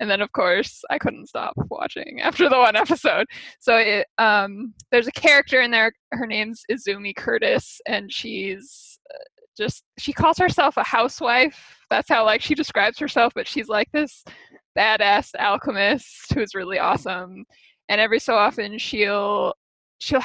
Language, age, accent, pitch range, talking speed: English, 20-39, American, 215-310 Hz, 155 wpm